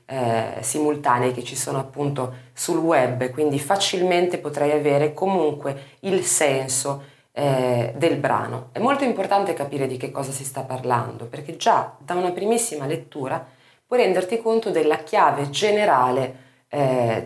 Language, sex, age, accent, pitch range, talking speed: Italian, female, 20-39, native, 125-180 Hz, 145 wpm